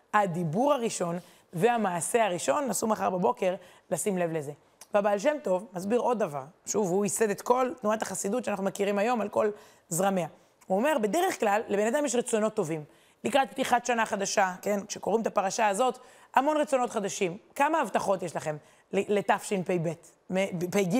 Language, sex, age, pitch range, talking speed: Hebrew, female, 20-39, 190-255 Hz, 160 wpm